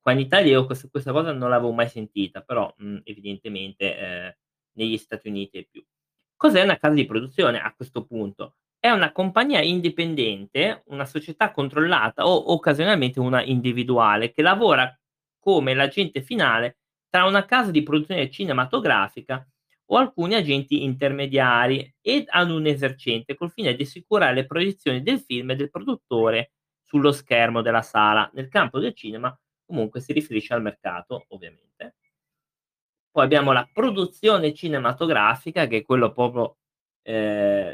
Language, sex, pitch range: Italian, male, 115-150 Hz